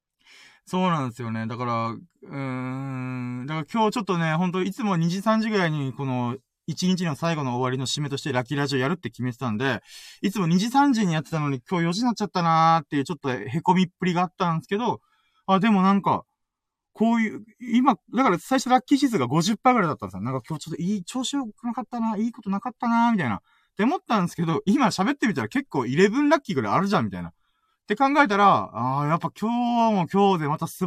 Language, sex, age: Japanese, male, 20-39